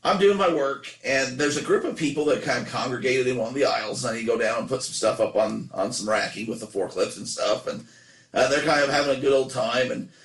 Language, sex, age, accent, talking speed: English, male, 40-59, American, 280 wpm